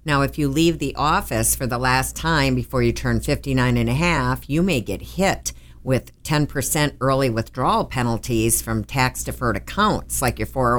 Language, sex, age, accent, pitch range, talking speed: English, female, 50-69, American, 115-155 Hz, 170 wpm